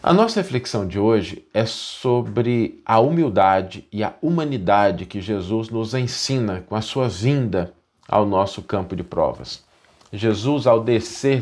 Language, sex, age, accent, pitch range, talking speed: Portuguese, male, 40-59, Brazilian, 95-120 Hz, 145 wpm